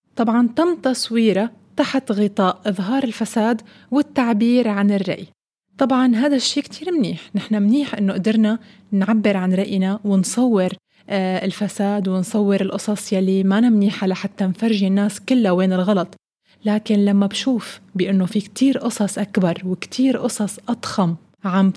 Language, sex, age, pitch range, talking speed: Arabic, female, 20-39, 200-245 Hz, 130 wpm